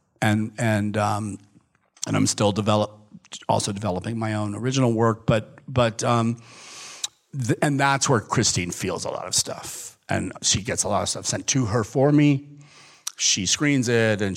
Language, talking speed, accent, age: English, 170 wpm, American, 40-59